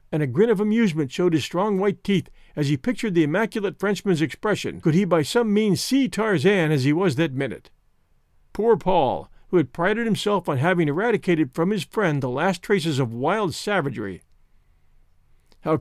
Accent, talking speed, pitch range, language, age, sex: American, 180 wpm, 150-200 Hz, English, 50-69, male